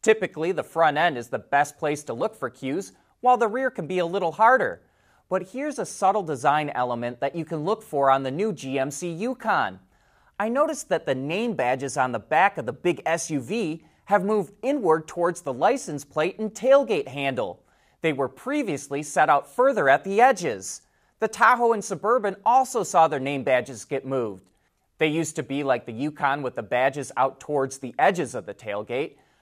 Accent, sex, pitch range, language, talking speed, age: American, male, 135-210 Hz, English, 195 wpm, 30-49